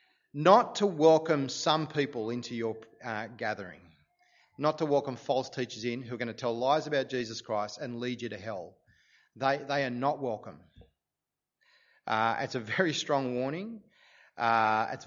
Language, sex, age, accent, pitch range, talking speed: English, male, 30-49, Australian, 120-155 Hz, 165 wpm